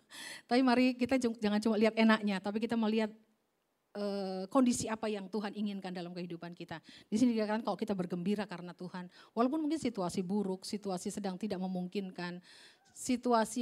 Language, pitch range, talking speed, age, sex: Indonesian, 190-240 Hz, 160 wpm, 40-59, female